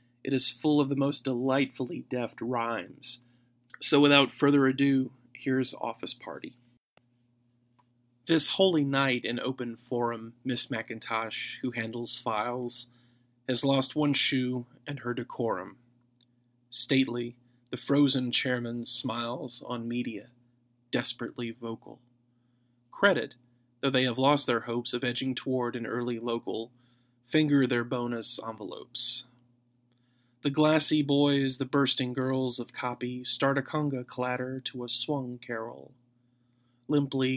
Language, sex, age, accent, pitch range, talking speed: English, male, 30-49, American, 120-135 Hz, 125 wpm